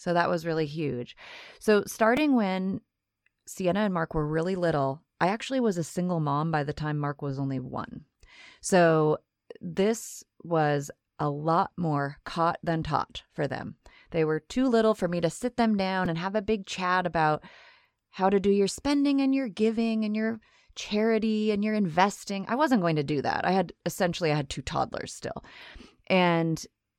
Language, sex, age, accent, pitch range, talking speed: English, female, 30-49, American, 155-205 Hz, 185 wpm